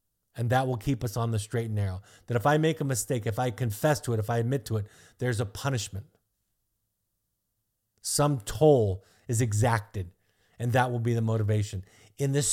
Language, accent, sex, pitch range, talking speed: English, American, male, 110-130 Hz, 195 wpm